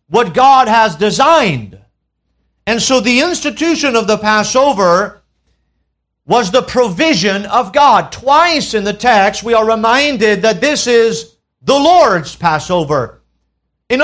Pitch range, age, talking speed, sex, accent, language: 200-270 Hz, 50-69, 130 wpm, male, American, English